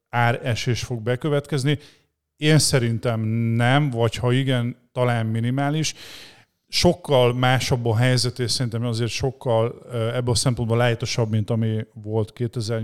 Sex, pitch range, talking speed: male, 115-135 Hz, 125 wpm